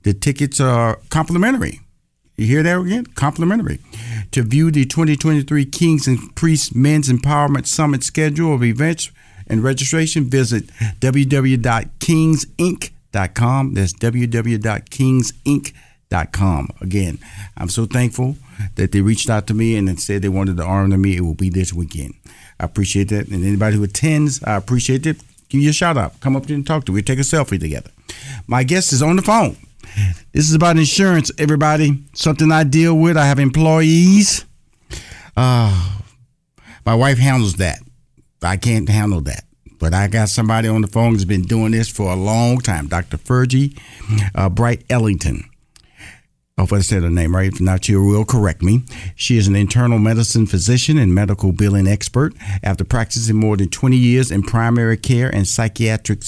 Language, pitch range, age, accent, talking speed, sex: English, 100-140 Hz, 50-69, American, 170 wpm, male